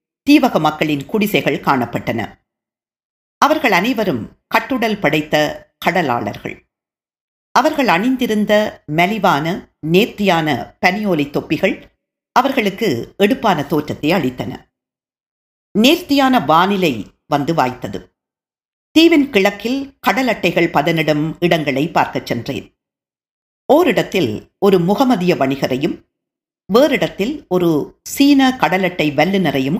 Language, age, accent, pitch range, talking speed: Tamil, 50-69, native, 155-235 Hz, 75 wpm